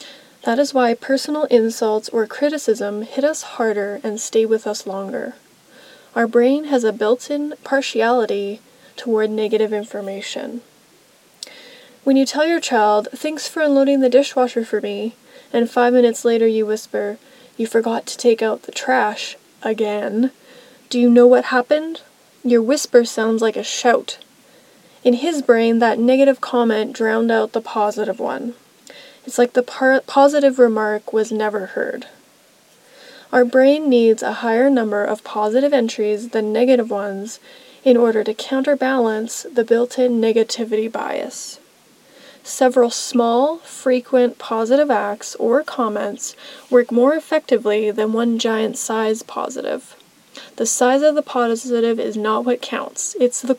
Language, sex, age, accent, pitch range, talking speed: English, female, 20-39, American, 225-265 Hz, 140 wpm